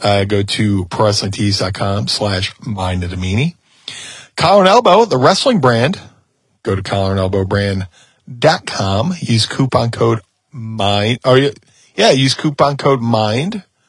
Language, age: English, 40-59